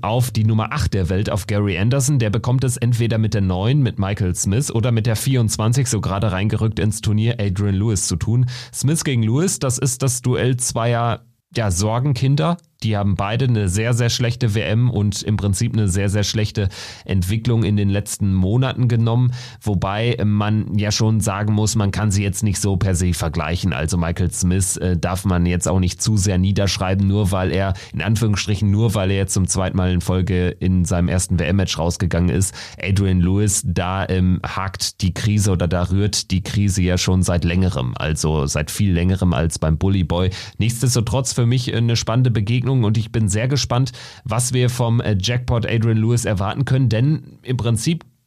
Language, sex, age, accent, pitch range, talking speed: German, male, 30-49, German, 95-120 Hz, 190 wpm